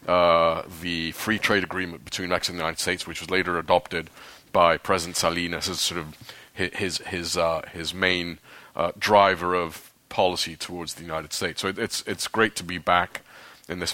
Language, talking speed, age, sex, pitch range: English, 190 wpm, 30-49, male, 85-95 Hz